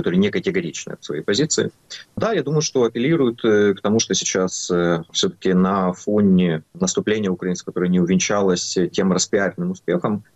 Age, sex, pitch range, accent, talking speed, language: 20-39, male, 90-110 Hz, native, 150 wpm, Russian